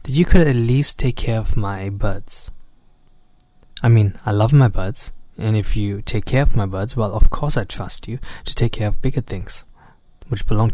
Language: English